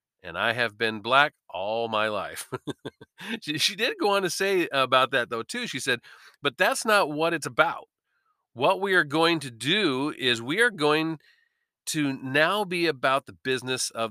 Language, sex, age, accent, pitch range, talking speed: English, male, 40-59, American, 130-190 Hz, 185 wpm